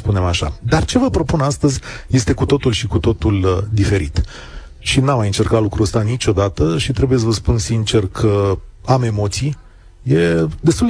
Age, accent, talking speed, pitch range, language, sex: 40-59, native, 175 wpm, 100-135 Hz, Romanian, male